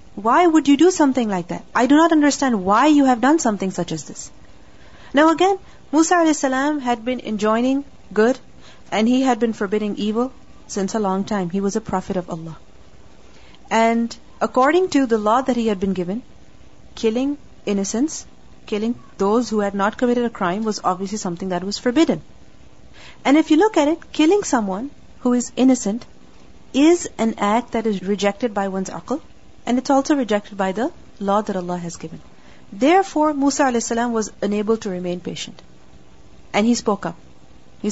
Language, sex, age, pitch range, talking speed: English, female, 40-59, 200-265 Hz, 180 wpm